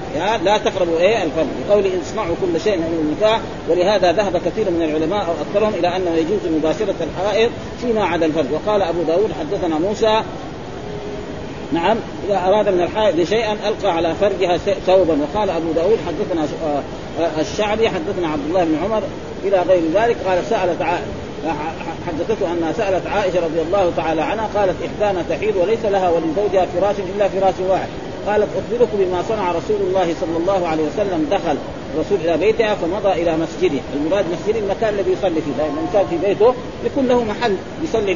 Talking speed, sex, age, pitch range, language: 165 wpm, male, 40-59, 170-220 Hz, Arabic